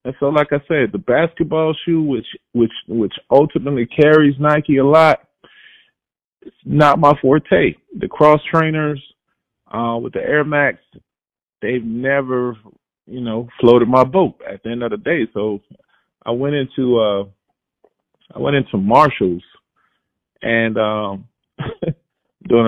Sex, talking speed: male, 140 wpm